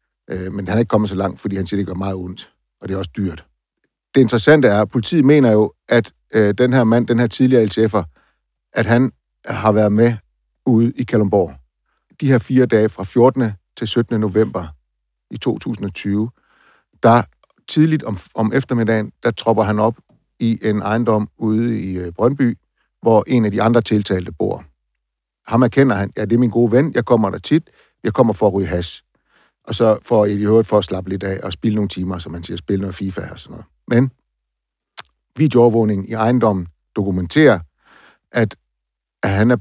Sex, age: male, 60-79